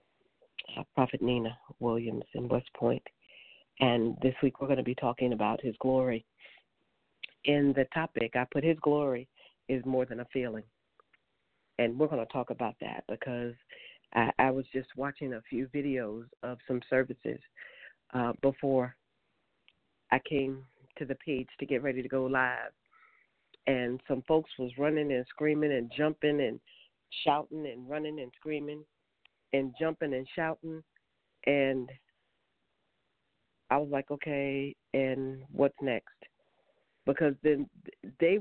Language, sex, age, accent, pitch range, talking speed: English, female, 40-59, American, 130-155 Hz, 140 wpm